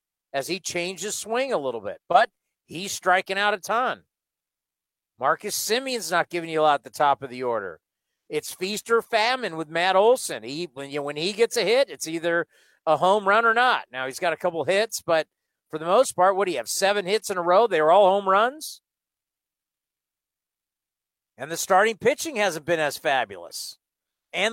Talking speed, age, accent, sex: 200 wpm, 50-69, American, male